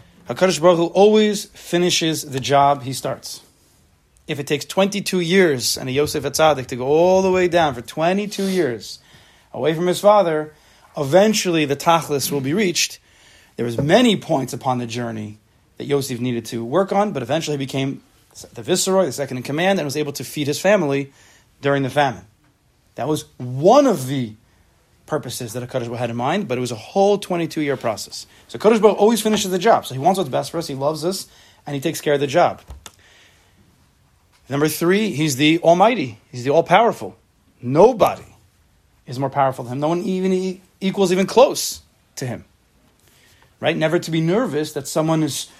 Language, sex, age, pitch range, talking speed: English, male, 30-49, 120-170 Hz, 185 wpm